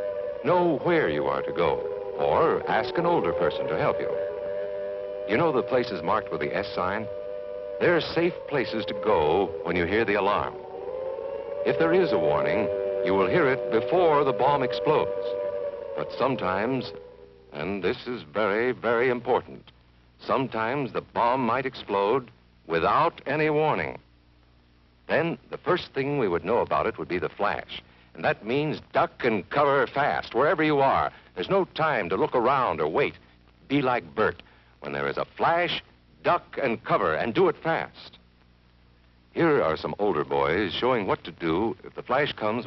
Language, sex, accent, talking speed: English, male, American, 170 wpm